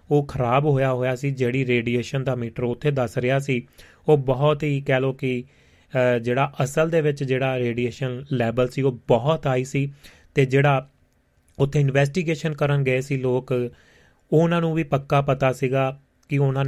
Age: 30-49